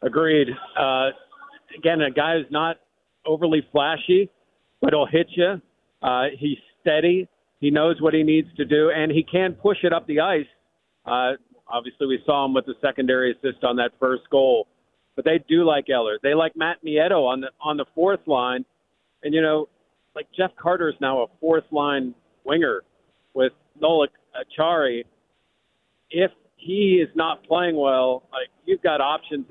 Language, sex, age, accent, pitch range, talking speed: English, male, 50-69, American, 130-160 Hz, 165 wpm